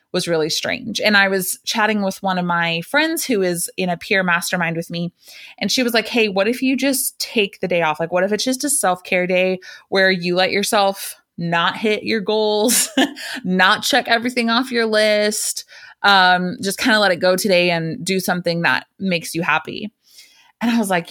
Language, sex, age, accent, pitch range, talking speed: English, female, 20-39, American, 175-220 Hz, 210 wpm